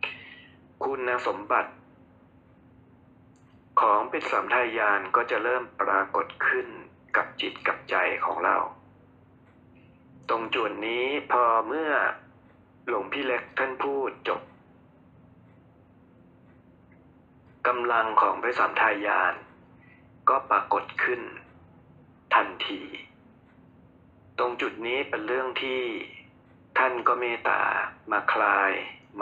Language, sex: Thai, male